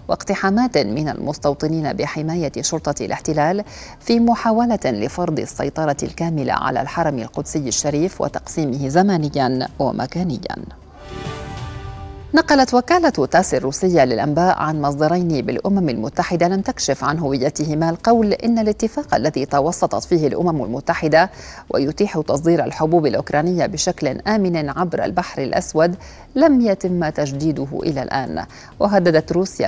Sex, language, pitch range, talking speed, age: female, Arabic, 150-175 Hz, 110 wpm, 40-59